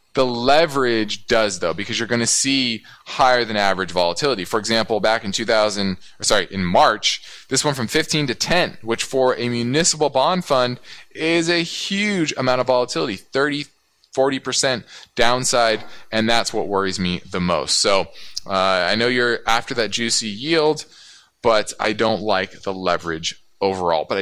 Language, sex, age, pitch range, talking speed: English, male, 20-39, 105-140 Hz, 165 wpm